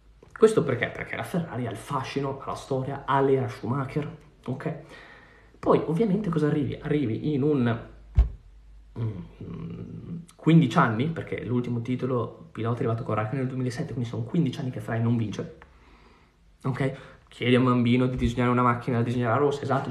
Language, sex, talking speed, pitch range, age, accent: Italian, male, 170 wpm, 115-145 Hz, 20-39, native